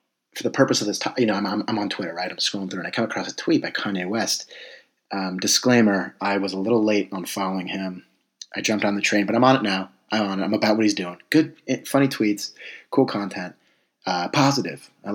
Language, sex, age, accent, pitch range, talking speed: English, male, 30-49, American, 95-110 Hz, 245 wpm